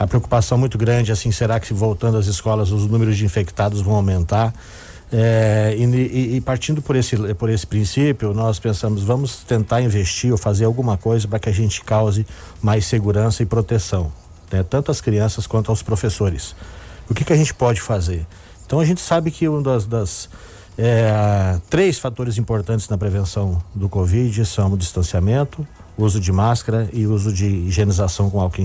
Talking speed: 175 wpm